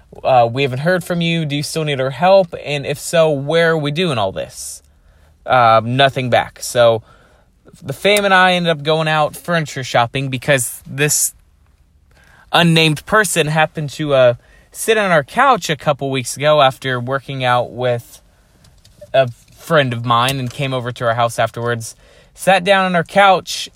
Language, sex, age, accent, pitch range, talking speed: English, male, 20-39, American, 115-155 Hz, 175 wpm